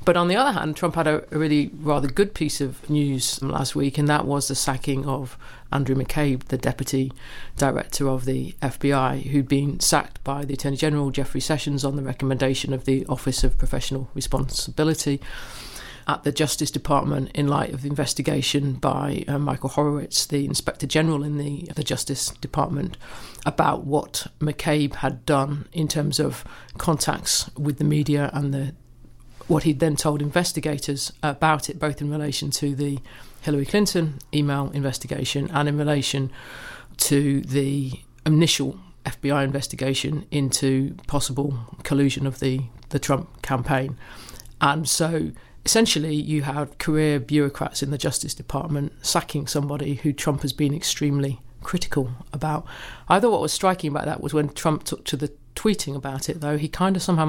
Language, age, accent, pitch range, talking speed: English, 50-69, British, 135-150 Hz, 165 wpm